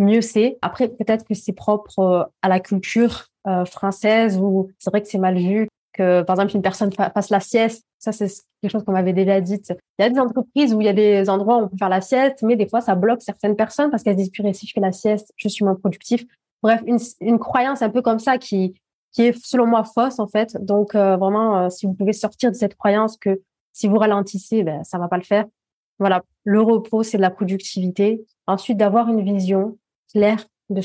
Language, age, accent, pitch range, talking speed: French, 20-39, French, 190-225 Hz, 245 wpm